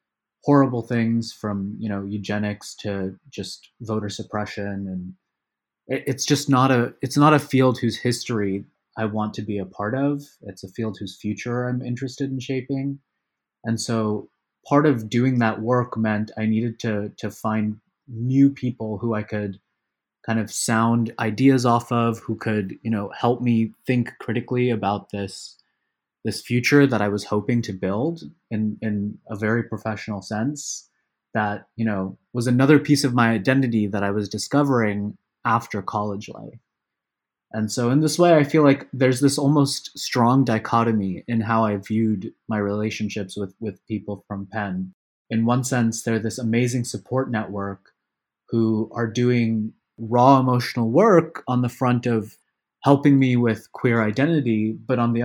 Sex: male